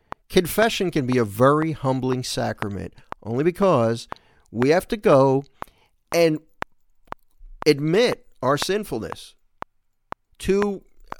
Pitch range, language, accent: 115-185 Hz, English, American